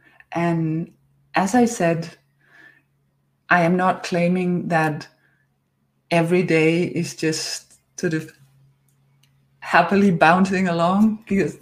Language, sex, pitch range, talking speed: English, female, 170-225 Hz, 100 wpm